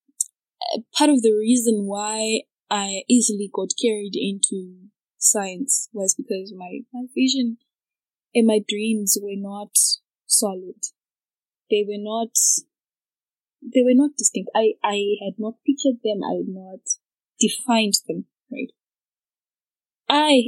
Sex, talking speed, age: female, 125 wpm, 10-29